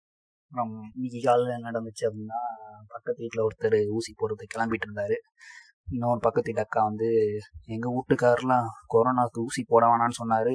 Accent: native